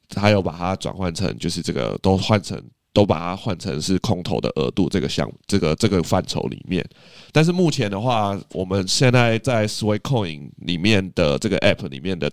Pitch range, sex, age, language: 90-110 Hz, male, 20-39, Chinese